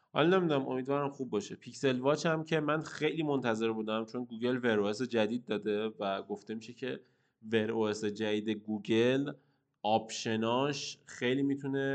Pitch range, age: 105-135 Hz, 20-39